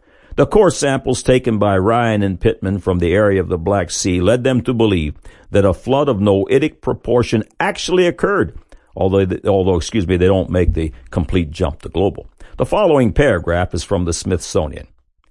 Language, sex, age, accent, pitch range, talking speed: English, male, 60-79, American, 95-145 Hz, 180 wpm